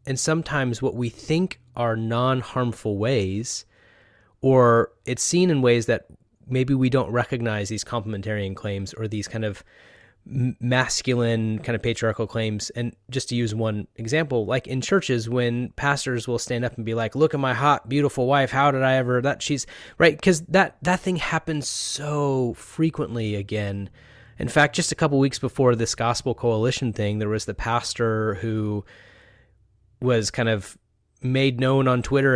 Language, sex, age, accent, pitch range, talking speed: English, male, 30-49, American, 110-140 Hz, 170 wpm